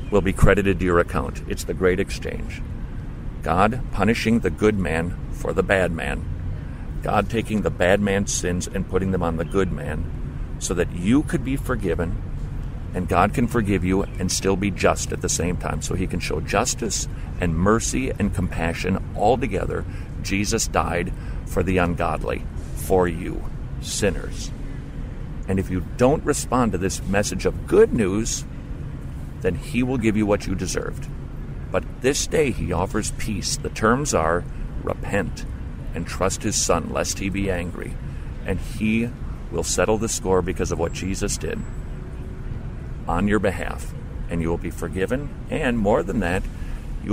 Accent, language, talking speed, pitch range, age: American, English, 165 wpm, 85-100 Hz, 50-69